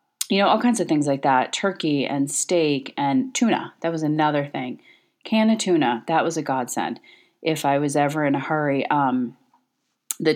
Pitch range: 140-175 Hz